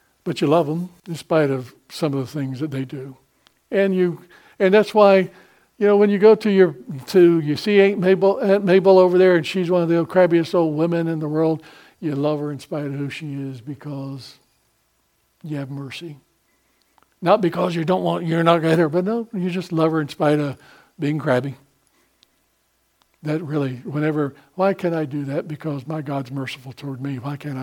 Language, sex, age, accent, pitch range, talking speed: English, male, 60-79, American, 140-175 Hz, 210 wpm